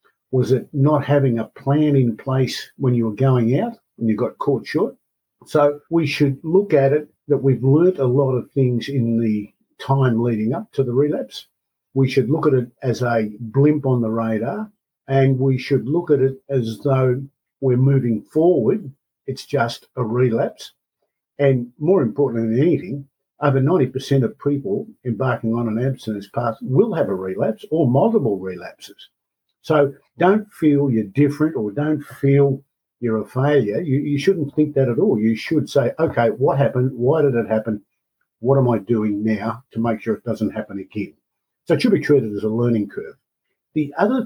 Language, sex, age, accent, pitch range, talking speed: English, male, 50-69, Australian, 115-145 Hz, 185 wpm